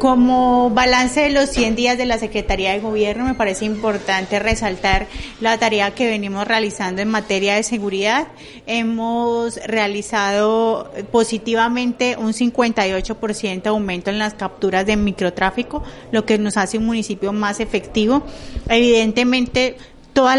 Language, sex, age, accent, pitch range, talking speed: Spanish, female, 30-49, Colombian, 200-230 Hz, 130 wpm